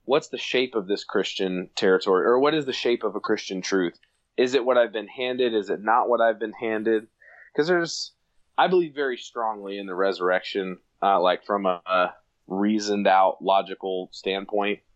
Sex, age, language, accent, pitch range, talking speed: male, 20-39, English, American, 95-110 Hz, 190 wpm